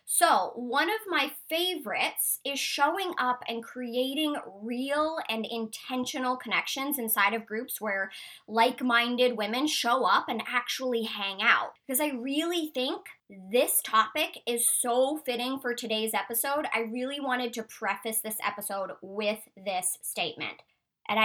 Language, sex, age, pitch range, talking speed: English, male, 20-39, 220-285 Hz, 140 wpm